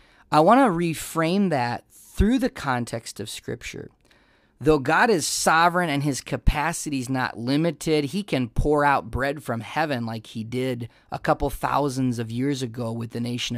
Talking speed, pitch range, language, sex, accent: 170 wpm, 120-160 Hz, English, male, American